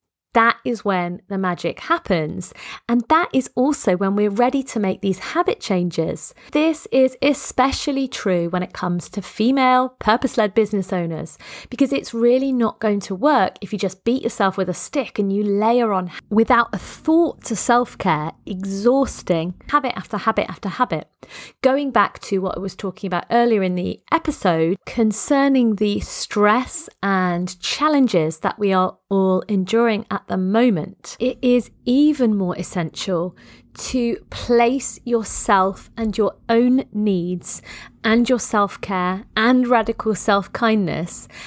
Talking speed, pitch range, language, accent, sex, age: 150 wpm, 190-245 Hz, English, British, female, 30-49